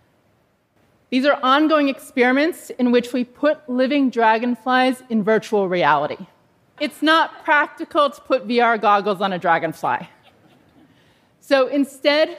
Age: 30-49